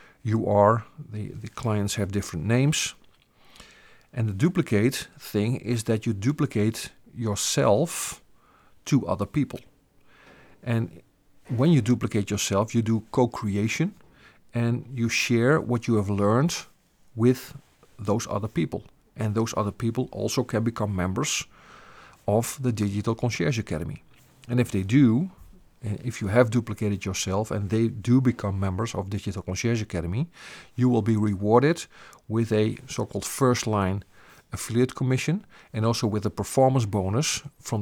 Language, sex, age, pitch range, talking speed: English, male, 50-69, 105-125 Hz, 140 wpm